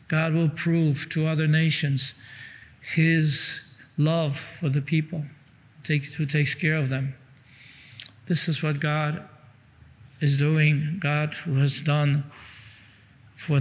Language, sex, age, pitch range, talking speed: English, male, 50-69, 140-155 Hz, 120 wpm